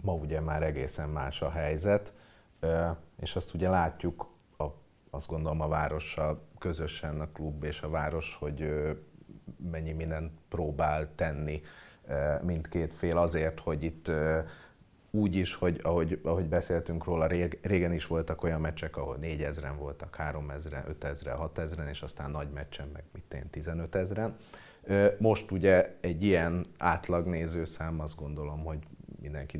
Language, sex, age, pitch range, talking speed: Hungarian, male, 30-49, 80-95 Hz, 135 wpm